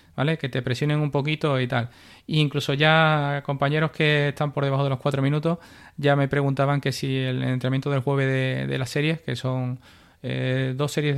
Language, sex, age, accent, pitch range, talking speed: Spanish, male, 20-39, Spanish, 125-155 Hz, 205 wpm